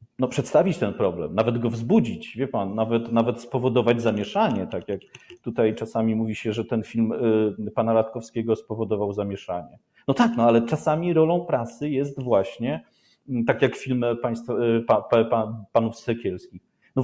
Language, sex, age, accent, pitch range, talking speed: Polish, male, 40-59, native, 110-130 Hz, 165 wpm